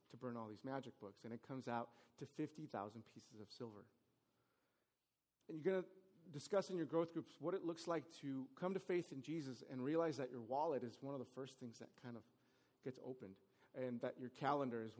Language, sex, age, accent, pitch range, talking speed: English, male, 30-49, American, 125-170 Hz, 220 wpm